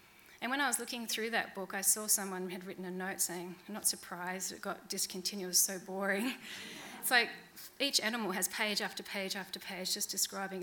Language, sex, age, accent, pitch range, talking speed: English, female, 30-49, Australian, 190-230 Hz, 205 wpm